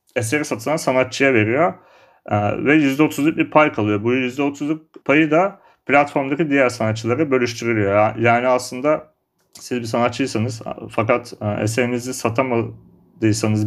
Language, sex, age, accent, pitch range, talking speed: Turkish, male, 40-59, native, 115-145 Hz, 110 wpm